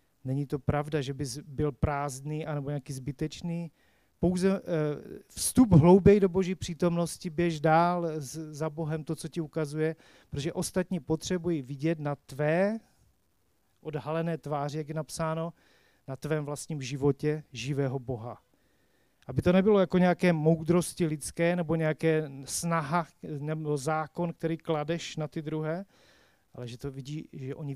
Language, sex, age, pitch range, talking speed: Czech, male, 40-59, 145-175 Hz, 140 wpm